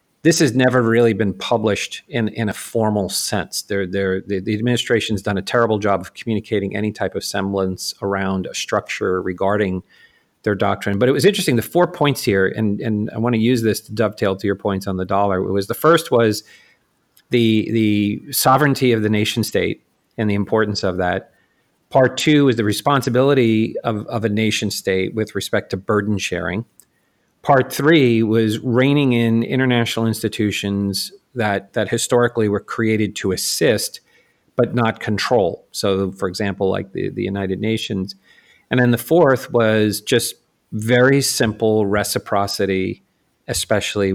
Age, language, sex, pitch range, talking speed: 40-59, English, male, 100-125 Hz, 160 wpm